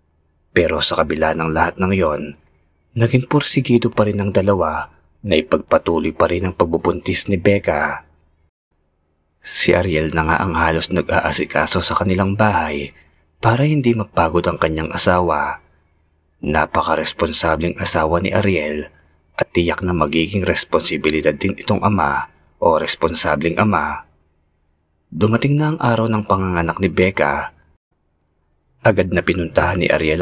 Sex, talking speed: male, 130 wpm